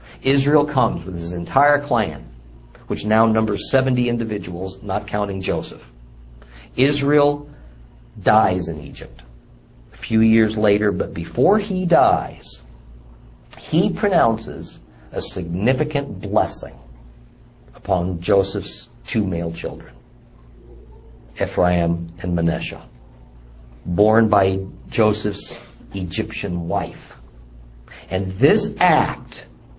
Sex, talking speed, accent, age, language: male, 95 wpm, American, 50-69, English